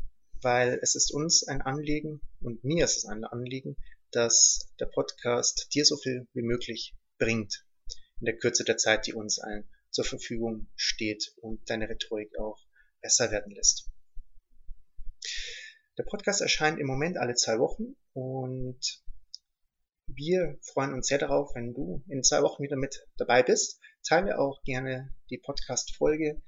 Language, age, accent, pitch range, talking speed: German, 30-49, German, 115-155 Hz, 150 wpm